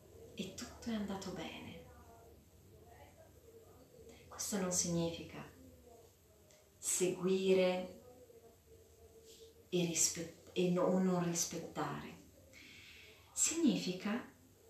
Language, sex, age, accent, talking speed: Italian, female, 30-49, native, 65 wpm